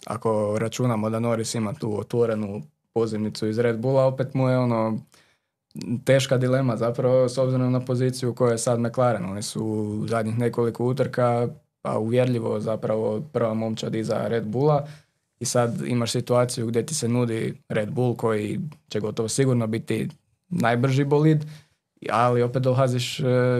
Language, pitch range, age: Croatian, 115-130 Hz, 20-39